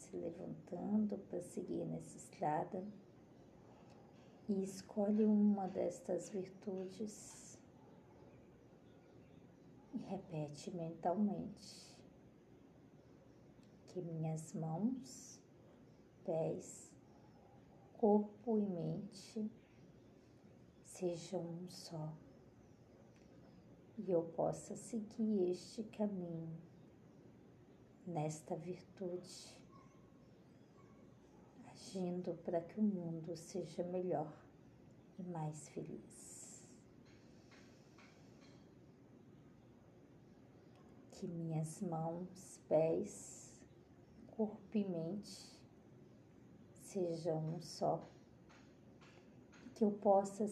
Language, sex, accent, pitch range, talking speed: Portuguese, female, Brazilian, 170-205 Hz, 65 wpm